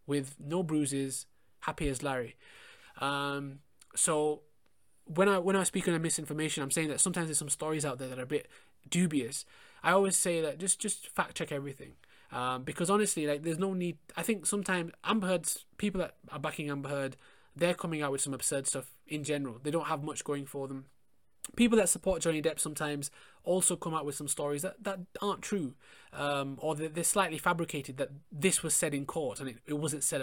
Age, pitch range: 20-39, 140-180 Hz